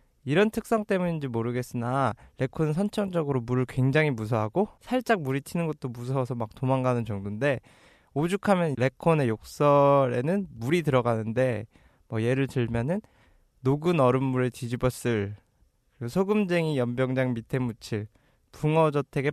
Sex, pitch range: male, 115-155 Hz